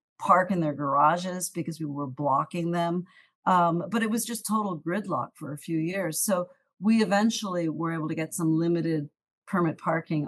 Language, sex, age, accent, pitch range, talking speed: English, female, 50-69, American, 160-200 Hz, 180 wpm